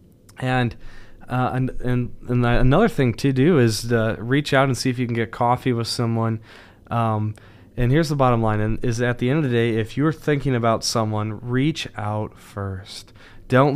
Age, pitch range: 20-39, 115-135 Hz